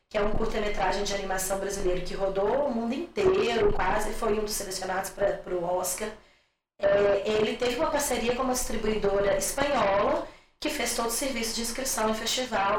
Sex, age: female, 20-39